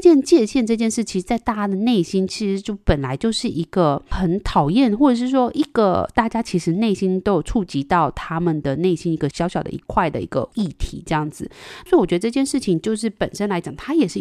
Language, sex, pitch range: Chinese, female, 165-240 Hz